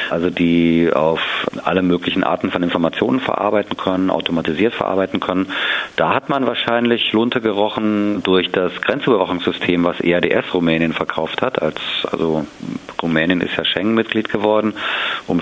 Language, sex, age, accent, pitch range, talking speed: German, male, 40-59, German, 85-105 Hz, 135 wpm